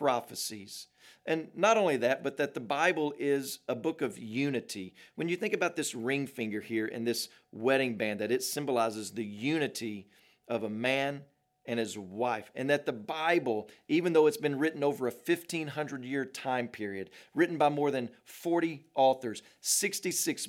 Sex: male